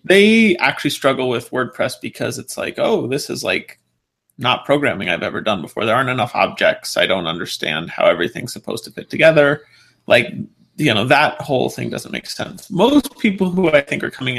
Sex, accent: male, American